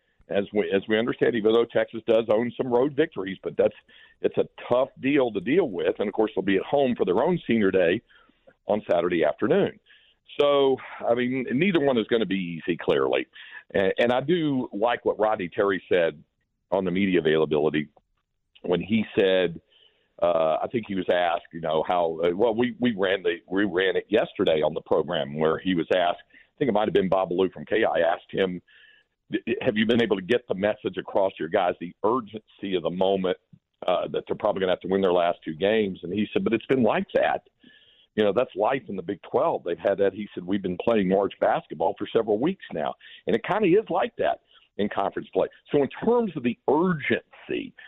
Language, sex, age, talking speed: English, male, 50-69, 220 wpm